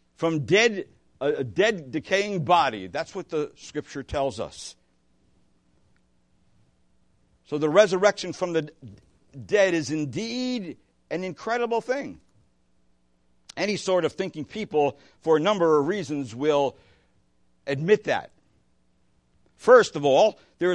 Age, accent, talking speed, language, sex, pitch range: 60-79, American, 115 wpm, English, male, 140-210 Hz